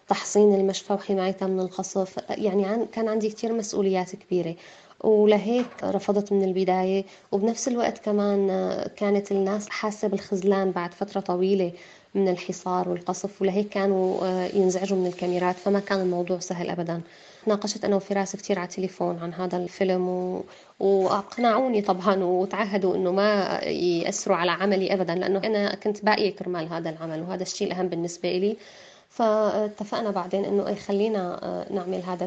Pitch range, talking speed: 185-205 Hz, 140 wpm